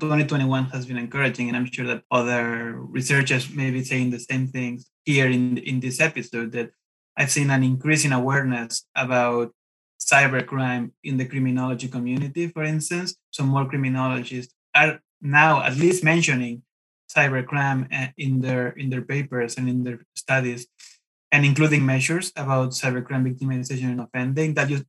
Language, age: English, 20-39